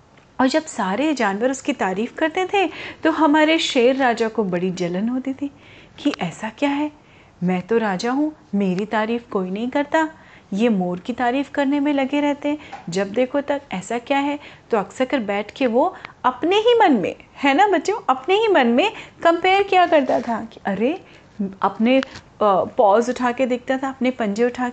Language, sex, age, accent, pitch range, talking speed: Hindi, female, 30-49, native, 200-285 Hz, 180 wpm